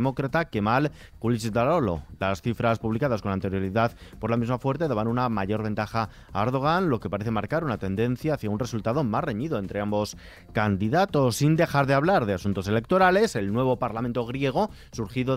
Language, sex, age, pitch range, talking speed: Spanish, male, 30-49, 110-155 Hz, 170 wpm